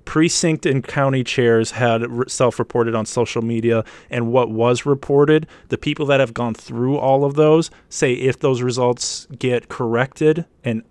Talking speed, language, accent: 160 wpm, English, American